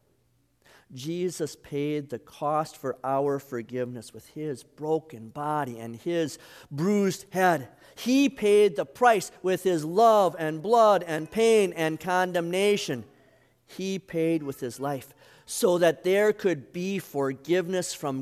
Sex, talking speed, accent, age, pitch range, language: male, 130 wpm, American, 50-69, 125-175 Hz, English